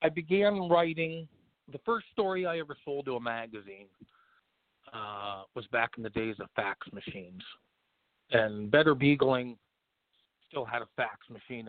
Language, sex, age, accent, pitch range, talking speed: English, male, 40-59, American, 115-155 Hz, 155 wpm